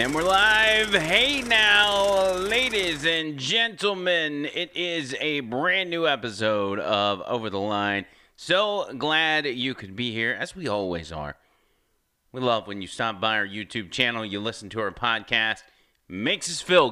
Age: 30-49